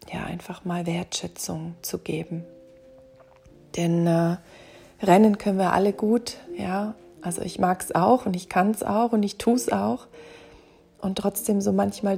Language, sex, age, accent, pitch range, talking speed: German, female, 40-59, German, 170-205 Hz, 165 wpm